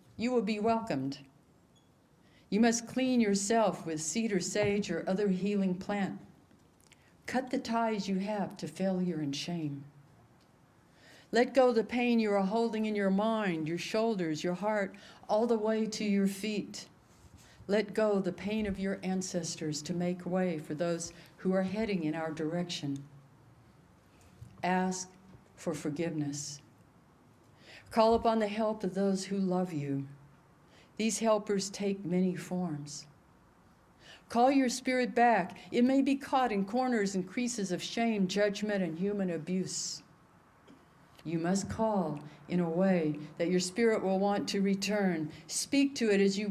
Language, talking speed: English, 150 wpm